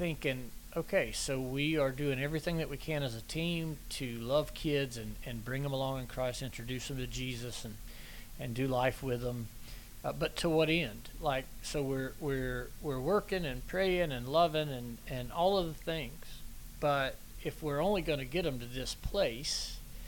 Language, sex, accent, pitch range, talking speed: English, male, American, 120-145 Hz, 195 wpm